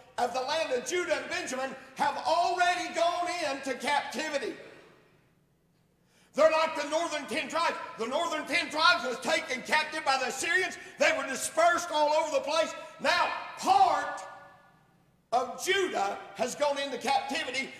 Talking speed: 145 wpm